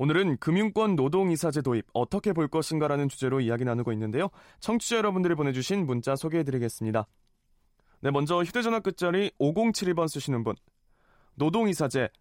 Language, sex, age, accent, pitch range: Korean, male, 20-39, native, 135-190 Hz